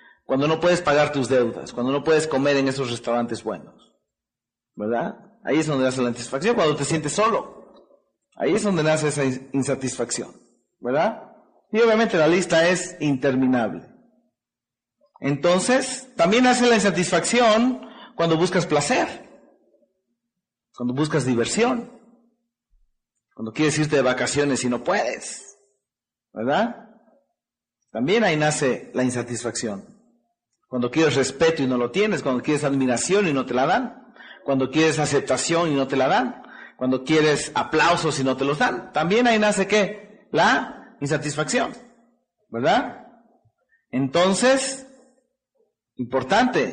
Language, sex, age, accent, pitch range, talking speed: Spanish, male, 40-59, Mexican, 135-210 Hz, 130 wpm